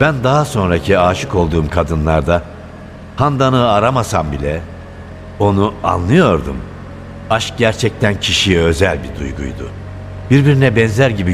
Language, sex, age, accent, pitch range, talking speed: Turkish, male, 60-79, native, 90-110 Hz, 105 wpm